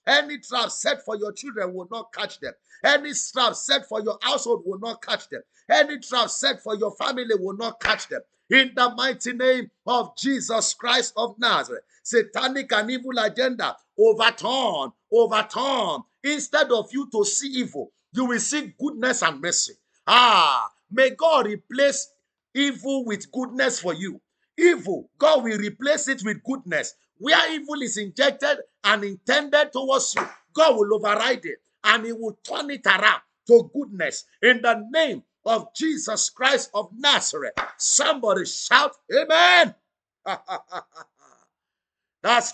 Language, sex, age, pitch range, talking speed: English, male, 50-69, 220-285 Hz, 150 wpm